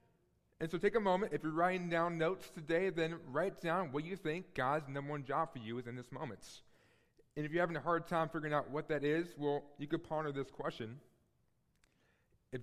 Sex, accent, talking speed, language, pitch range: male, American, 220 wpm, English, 135-170 Hz